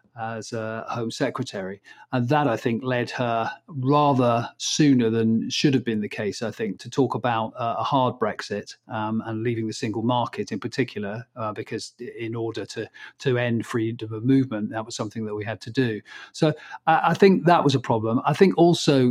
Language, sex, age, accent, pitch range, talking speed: English, male, 40-59, British, 115-135 Hz, 195 wpm